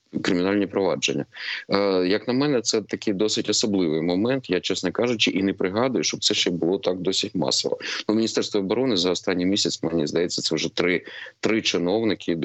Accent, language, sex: native, Ukrainian, male